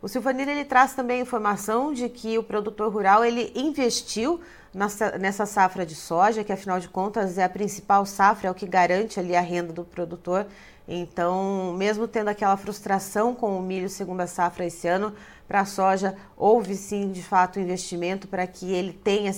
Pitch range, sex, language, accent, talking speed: 185-230 Hz, female, Portuguese, Brazilian, 185 wpm